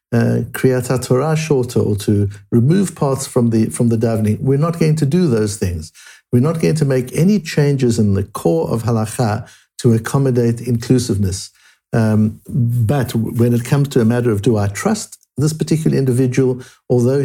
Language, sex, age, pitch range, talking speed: English, male, 60-79, 110-140 Hz, 175 wpm